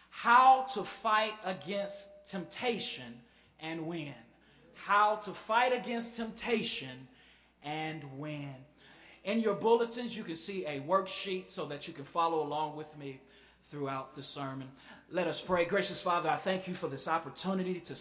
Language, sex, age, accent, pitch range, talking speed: English, male, 30-49, American, 160-200 Hz, 150 wpm